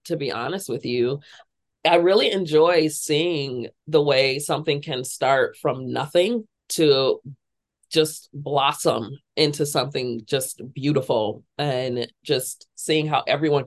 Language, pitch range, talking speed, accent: English, 130-160 Hz, 125 wpm, American